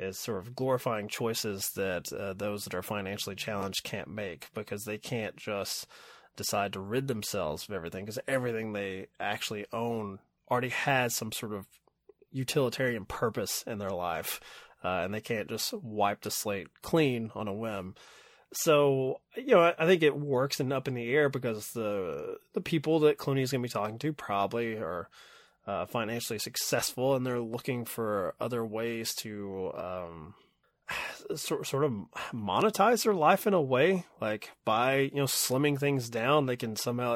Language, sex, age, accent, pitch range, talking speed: English, male, 20-39, American, 105-140 Hz, 175 wpm